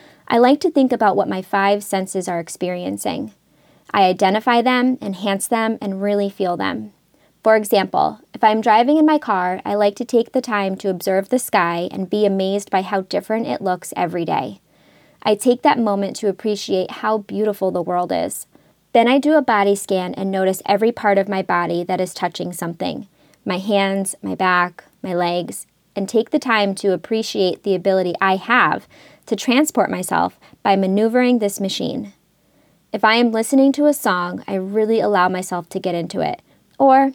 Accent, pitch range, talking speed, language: American, 190-230 Hz, 185 wpm, English